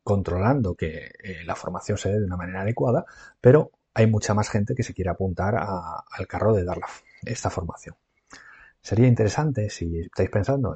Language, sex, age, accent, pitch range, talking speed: Spanish, male, 40-59, Spanish, 90-105 Hz, 175 wpm